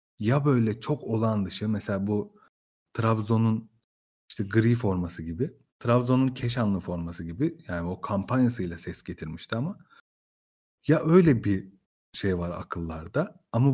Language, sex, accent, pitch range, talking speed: Turkish, male, native, 100-130 Hz, 125 wpm